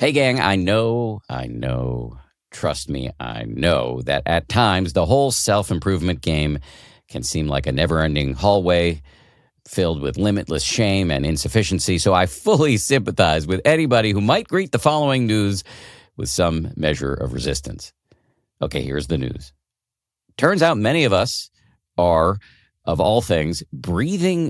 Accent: American